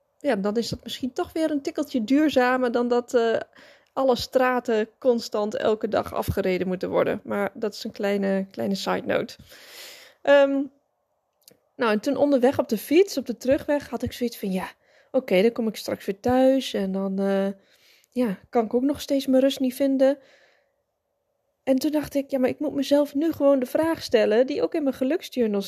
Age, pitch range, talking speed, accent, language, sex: 10-29, 220-280 Hz, 200 wpm, Dutch, Dutch, female